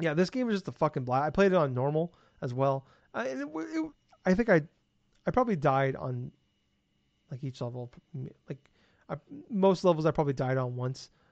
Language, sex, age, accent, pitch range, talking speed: English, male, 30-49, American, 130-165 Hz, 195 wpm